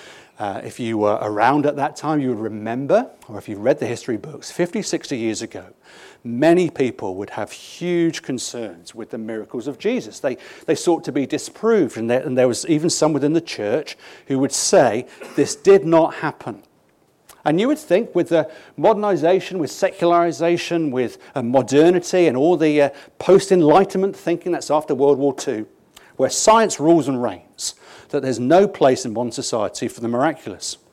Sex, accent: male, British